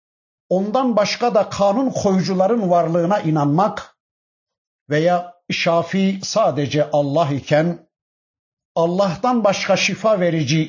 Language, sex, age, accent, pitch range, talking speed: Turkish, male, 60-79, native, 140-190 Hz, 90 wpm